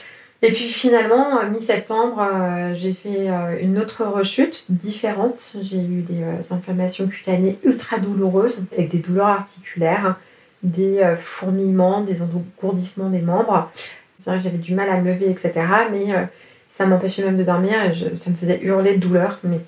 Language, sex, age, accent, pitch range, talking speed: French, female, 30-49, French, 180-215 Hz, 170 wpm